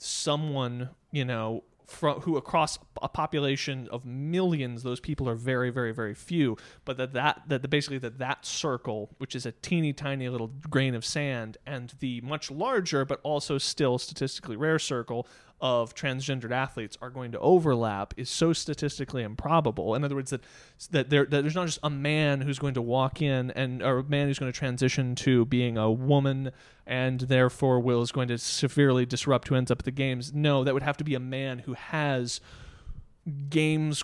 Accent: American